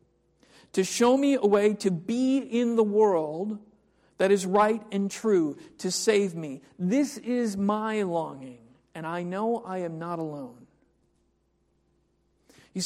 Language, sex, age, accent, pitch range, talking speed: English, male, 40-59, American, 170-220 Hz, 140 wpm